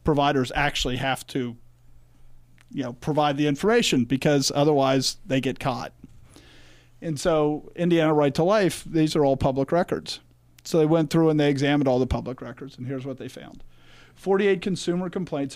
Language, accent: English, American